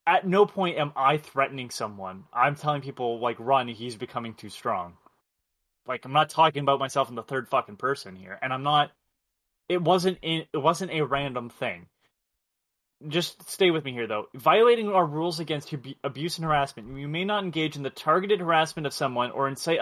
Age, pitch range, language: 20-39, 130-165 Hz, English